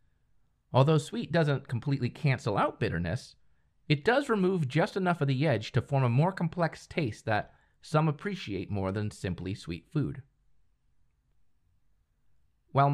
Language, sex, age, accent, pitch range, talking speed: English, male, 30-49, American, 100-140 Hz, 140 wpm